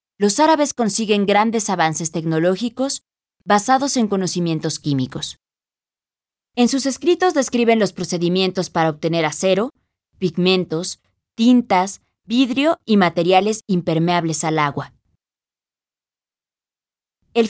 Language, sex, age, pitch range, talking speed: Spanish, female, 20-39, 170-225 Hz, 95 wpm